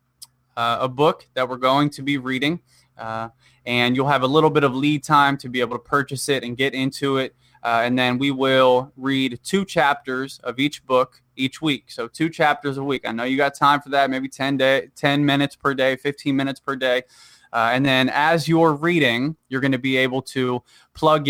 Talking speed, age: 220 wpm, 20-39